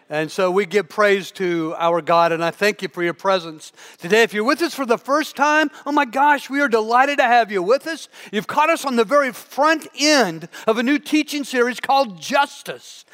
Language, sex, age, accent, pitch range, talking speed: English, male, 50-69, American, 230-295 Hz, 230 wpm